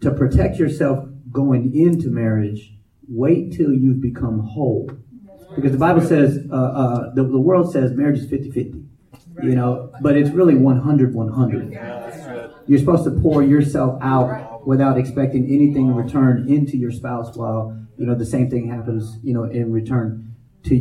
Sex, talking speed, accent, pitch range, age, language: male, 160 wpm, American, 120-140 Hz, 40-59, English